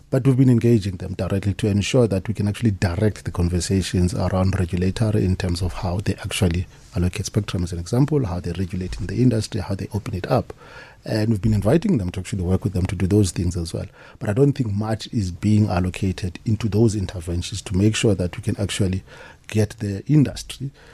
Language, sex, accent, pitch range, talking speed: English, male, South African, 95-120 Hz, 215 wpm